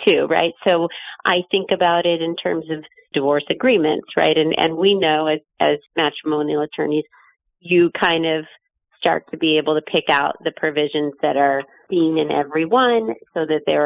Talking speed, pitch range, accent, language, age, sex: 180 wpm, 150-175 Hz, American, English, 40-59, female